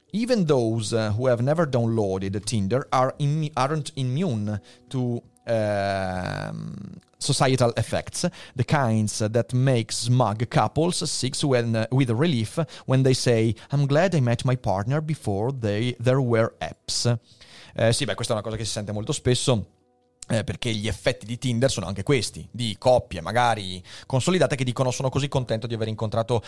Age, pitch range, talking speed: 30-49, 110-145 Hz, 165 wpm